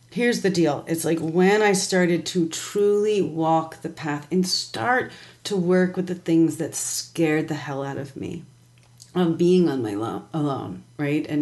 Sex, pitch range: female, 145-175 Hz